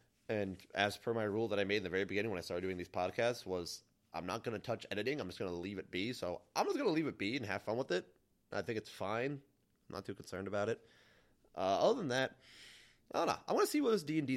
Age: 30-49